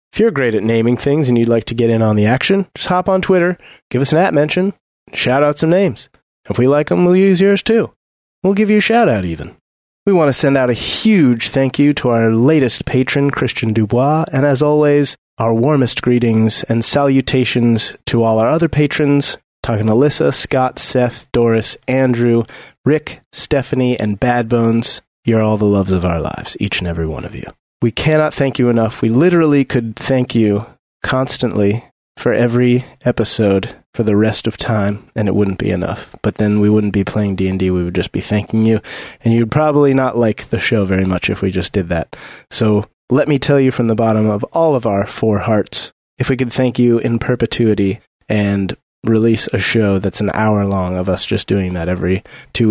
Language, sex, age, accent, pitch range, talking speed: English, male, 30-49, American, 105-140 Hz, 210 wpm